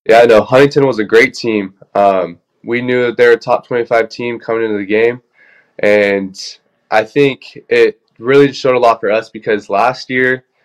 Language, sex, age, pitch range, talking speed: English, male, 20-39, 100-115 Hz, 195 wpm